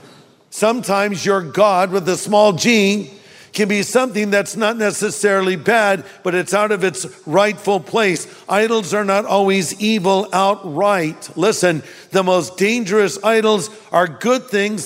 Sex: male